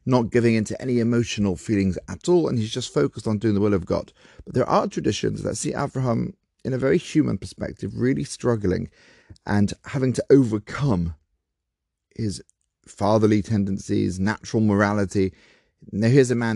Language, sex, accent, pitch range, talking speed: English, male, British, 100-125 Hz, 165 wpm